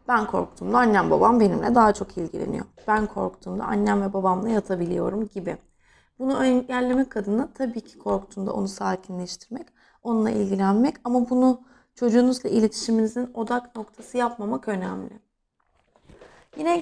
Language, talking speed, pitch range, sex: English, 120 wpm, 195-245 Hz, female